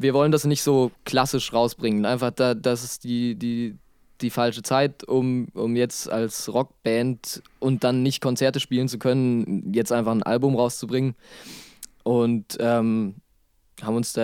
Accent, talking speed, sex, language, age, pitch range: German, 160 wpm, male, German, 20-39, 115-135 Hz